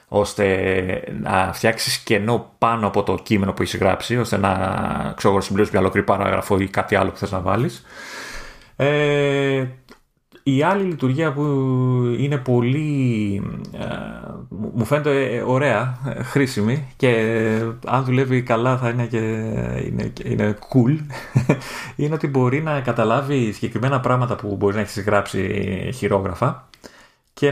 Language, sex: Greek, male